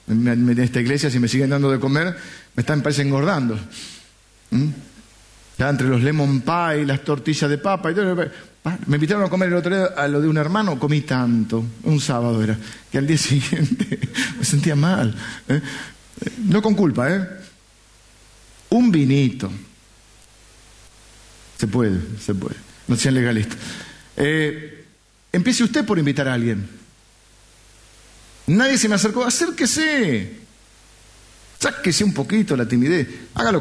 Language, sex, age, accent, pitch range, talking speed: Spanish, male, 50-69, Argentinian, 110-160 Hz, 150 wpm